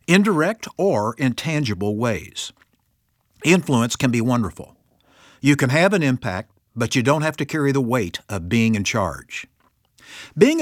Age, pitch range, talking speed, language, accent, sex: 60-79, 110-160 Hz, 145 wpm, English, American, male